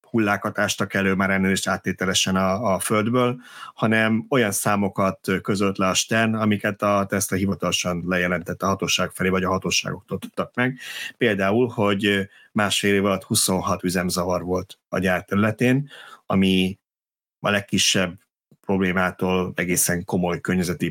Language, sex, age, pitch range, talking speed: Hungarian, male, 30-49, 95-110 Hz, 130 wpm